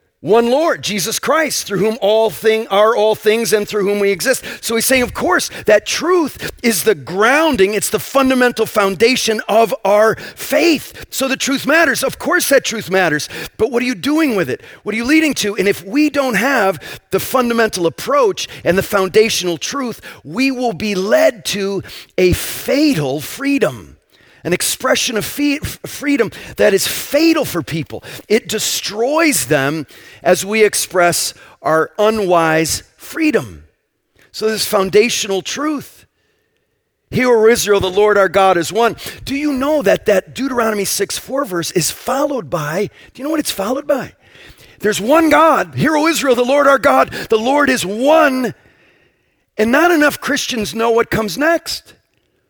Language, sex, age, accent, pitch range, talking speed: English, male, 40-59, American, 195-280 Hz, 165 wpm